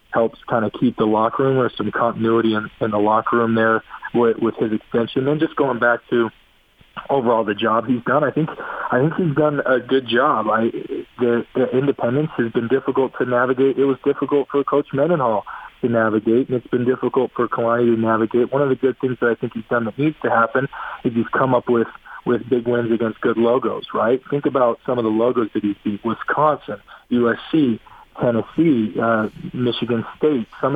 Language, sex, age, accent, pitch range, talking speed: English, male, 40-59, American, 115-130 Hz, 210 wpm